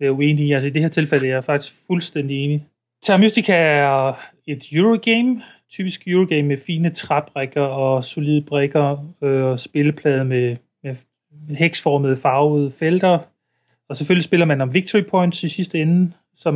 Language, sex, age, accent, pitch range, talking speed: Danish, male, 30-49, native, 145-170 Hz, 165 wpm